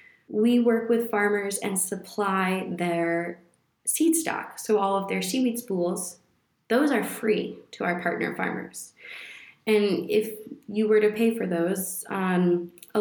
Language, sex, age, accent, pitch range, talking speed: English, female, 20-39, American, 180-215 Hz, 150 wpm